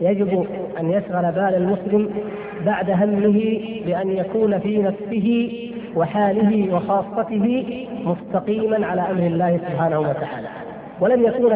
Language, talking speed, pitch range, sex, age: Arabic, 110 wpm, 190-225 Hz, female, 30-49